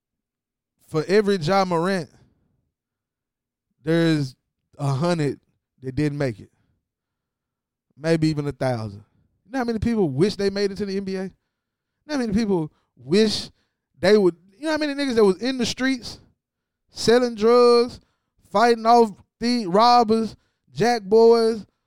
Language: English